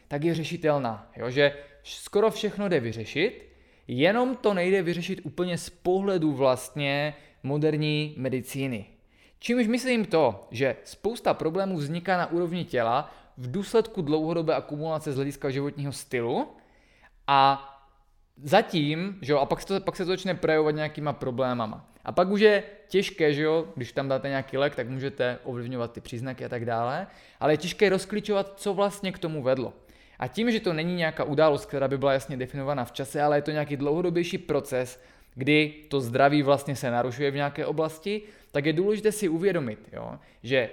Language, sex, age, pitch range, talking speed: Czech, male, 20-39, 135-180 Hz, 170 wpm